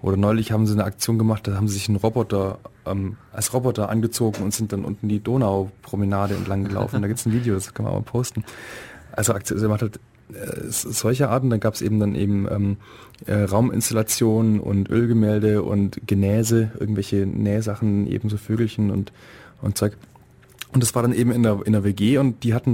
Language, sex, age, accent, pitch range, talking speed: German, male, 20-39, German, 100-115 Hz, 205 wpm